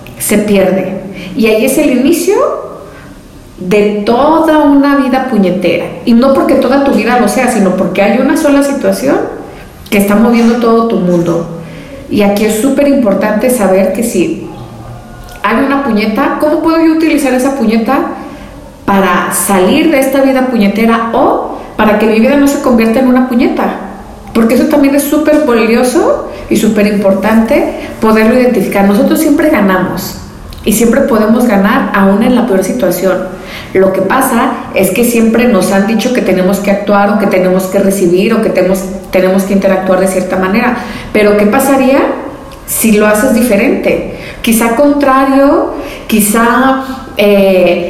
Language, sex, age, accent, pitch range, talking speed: Spanish, female, 40-59, Mexican, 195-270 Hz, 160 wpm